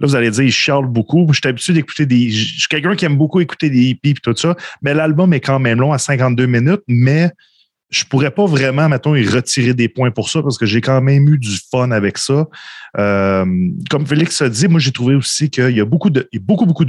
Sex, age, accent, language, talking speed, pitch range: male, 30-49, Canadian, French, 260 wpm, 115-155 Hz